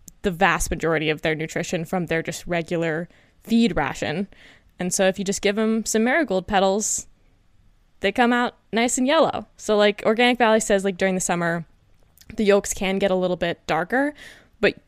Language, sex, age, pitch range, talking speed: English, female, 20-39, 170-205 Hz, 185 wpm